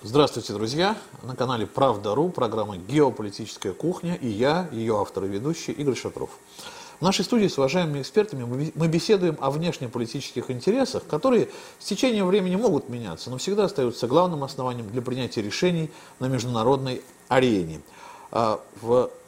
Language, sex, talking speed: Russian, male, 140 wpm